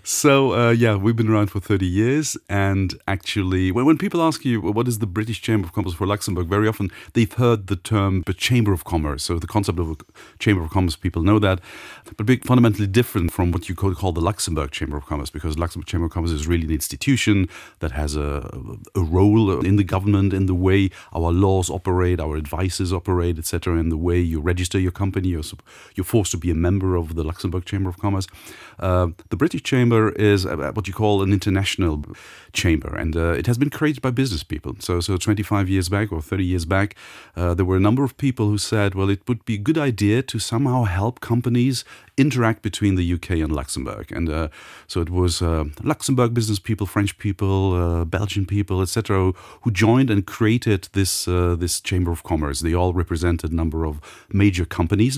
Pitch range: 90-110 Hz